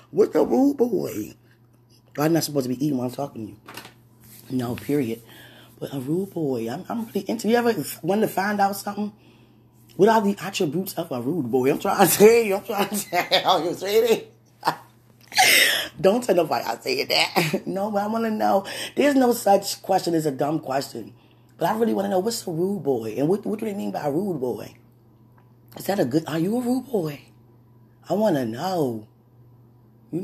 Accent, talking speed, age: American, 205 wpm, 20-39